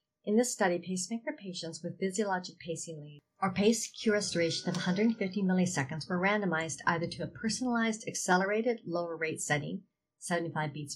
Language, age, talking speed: English, 50-69, 150 wpm